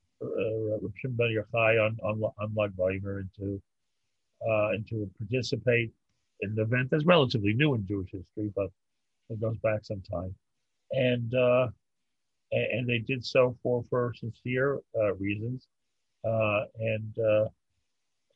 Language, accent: English, American